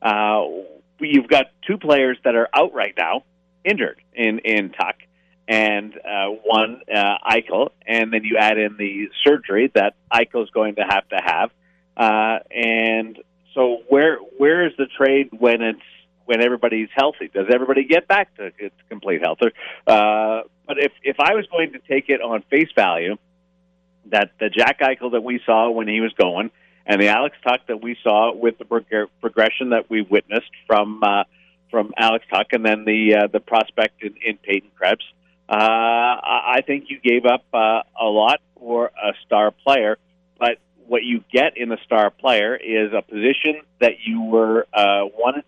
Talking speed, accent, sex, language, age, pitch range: 180 wpm, American, male, English, 40-59, 105-135 Hz